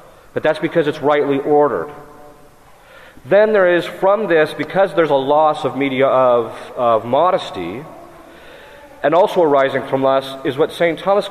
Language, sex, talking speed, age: English, male, 155 wpm, 40-59